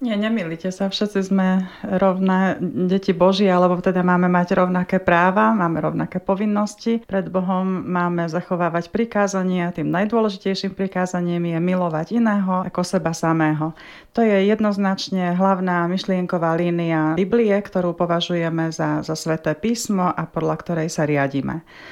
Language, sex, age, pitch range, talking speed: Slovak, female, 30-49, 170-200 Hz, 135 wpm